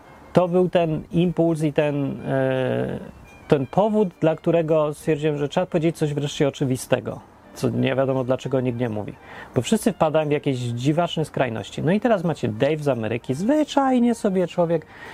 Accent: native